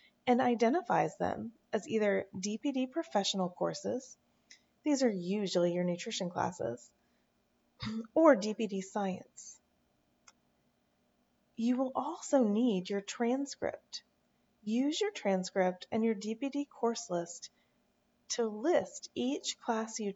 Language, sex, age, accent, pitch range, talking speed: English, female, 30-49, American, 190-260 Hz, 105 wpm